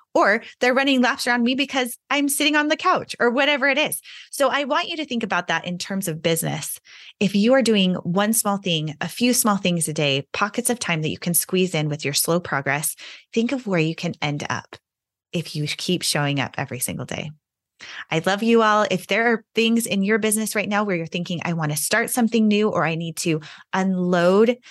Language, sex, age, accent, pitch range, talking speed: English, female, 20-39, American, 170-220 Hz, 230 wpm